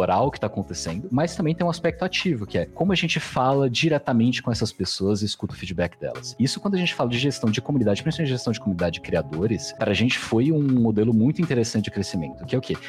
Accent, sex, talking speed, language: Brazilian, male, 255 wpm, Portuguese